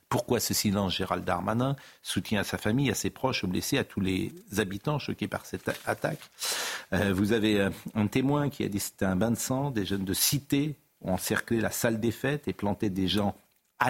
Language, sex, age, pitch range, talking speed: French, male, 50-69, 100-130 Hz, 220 wpm